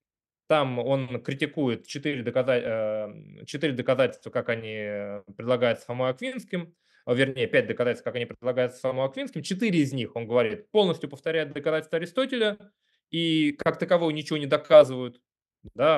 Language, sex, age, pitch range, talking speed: Russian, male, 20-39, 120-165 Hz, 125 wpm